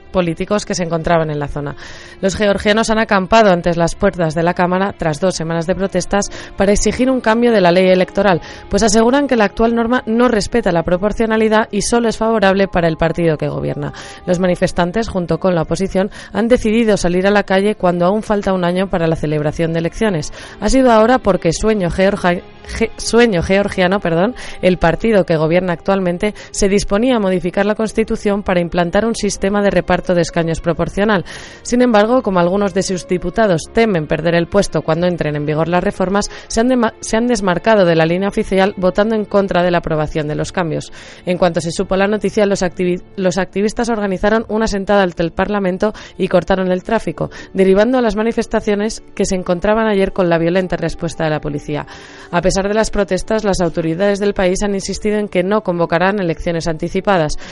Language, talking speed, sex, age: Spanish, 195 wpm, female, 20-39